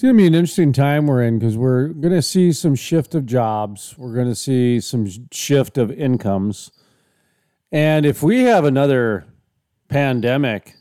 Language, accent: English, American